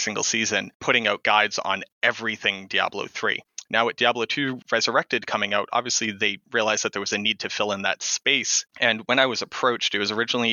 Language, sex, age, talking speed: English, male, 20-39, 210 wpm